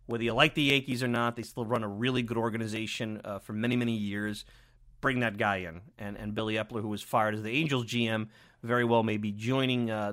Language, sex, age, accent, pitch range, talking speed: English, male, 30-49, American, 110-130 Hz, 235 wpm